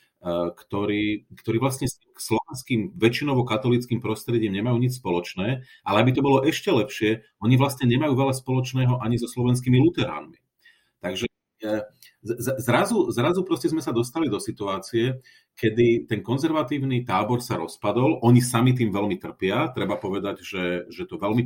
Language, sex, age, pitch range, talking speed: Slovak, male, 40-59, 100-125 Hz, 145 wpm